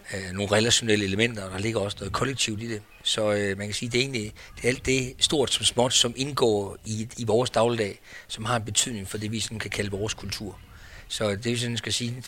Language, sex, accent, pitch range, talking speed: Danish, male, native, 105-120 Hz, 230 wpm